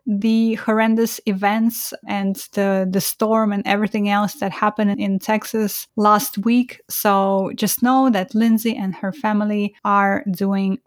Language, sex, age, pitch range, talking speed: English, female, 20-39, 200-245 Hz, 145 wpm